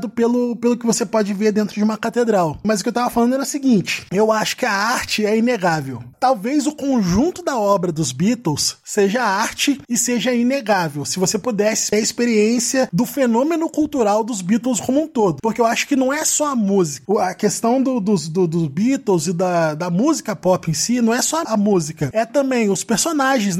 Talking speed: 215 wpm